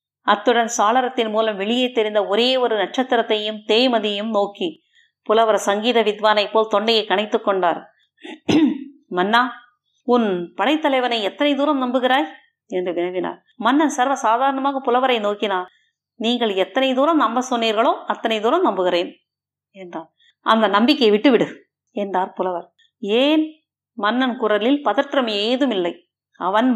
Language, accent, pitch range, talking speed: Tamil, native, 210-270 Hz, 110 wpm